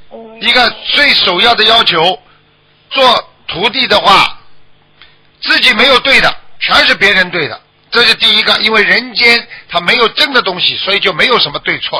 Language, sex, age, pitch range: Chinese, male, 50-69, 160-220 Hz